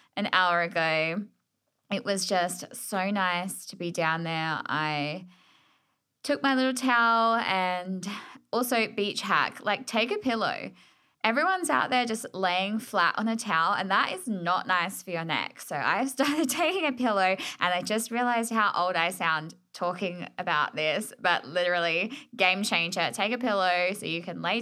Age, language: 10-29, English